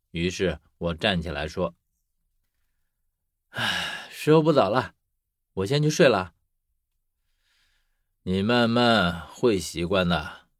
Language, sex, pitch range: Chinese, male, 85-130 Hz